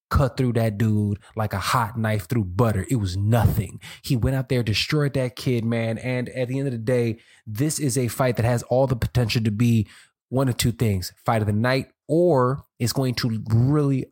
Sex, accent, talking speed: male, American, 220 wpm